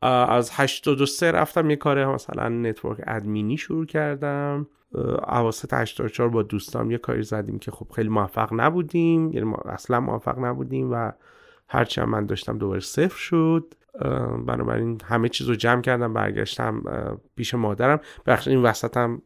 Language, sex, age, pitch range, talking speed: Persian, male, 30-49, 105-140 Hz, 145 wpm